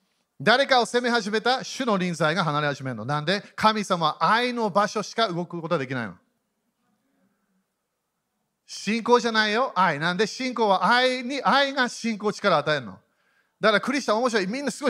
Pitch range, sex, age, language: 160-230 Hz, male, 40-59, Japanese